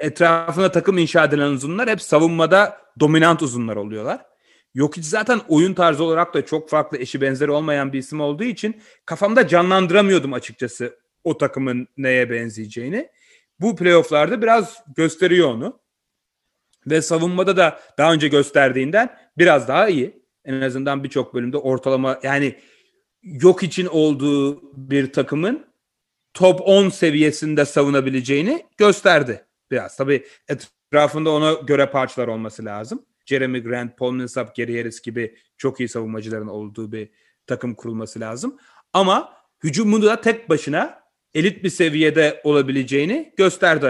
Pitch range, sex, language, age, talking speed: 130-180 Hz, male, Turkish, 40-59, 130 wpm